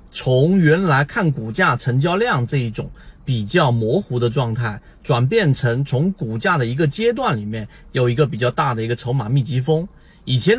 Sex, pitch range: male, 120-165 Hz